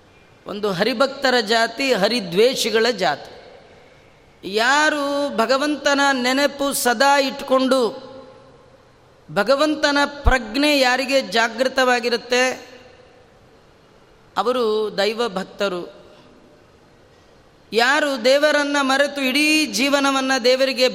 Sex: female